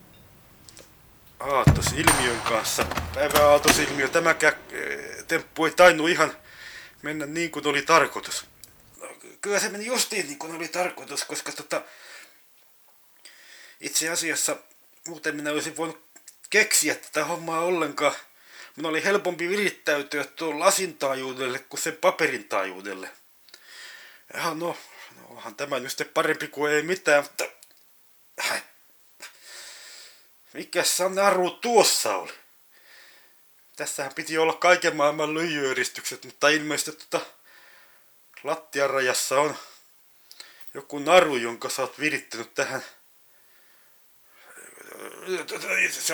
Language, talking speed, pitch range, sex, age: Finnish, 105 wpm, 145-185 Hz, male, 30-49